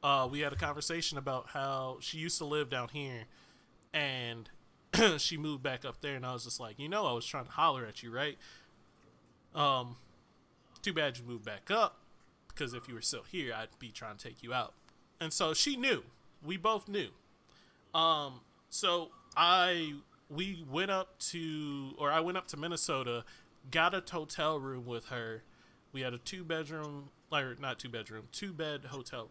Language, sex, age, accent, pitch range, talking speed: English, male, 20-39, American, 130-170 Hz, 185 wpm